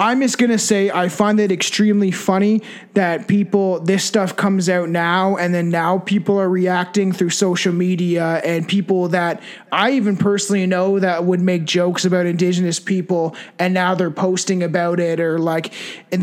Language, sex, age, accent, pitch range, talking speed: English, male, 20-39, American, 175-205 Hz, 180 wpm